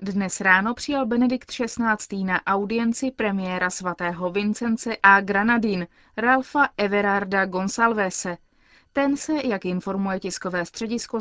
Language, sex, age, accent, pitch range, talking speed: Czech, female, 30-49, native, 185-235 Hz, 110 wpm